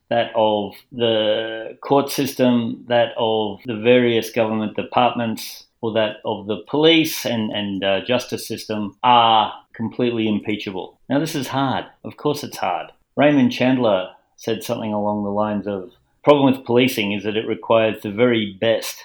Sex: male